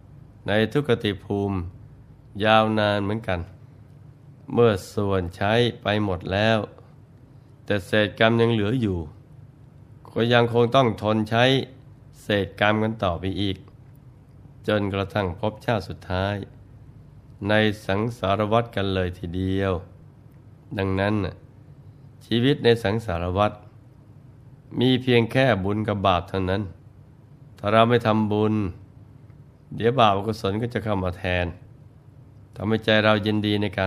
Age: 20-39